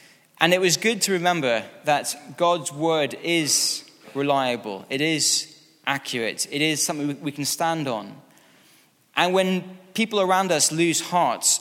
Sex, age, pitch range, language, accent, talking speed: male, 20-39, 135-165 Hz, English, British, 145 wpm